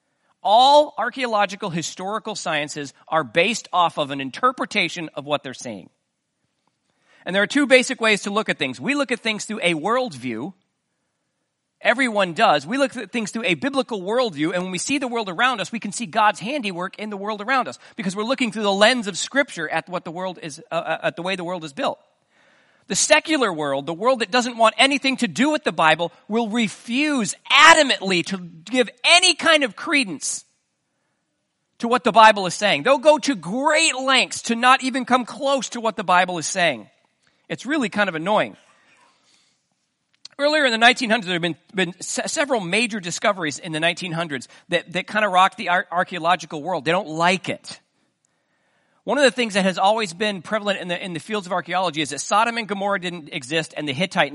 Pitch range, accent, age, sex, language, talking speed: 175-250 Hz, American, 40-59, male, English, 200 wpm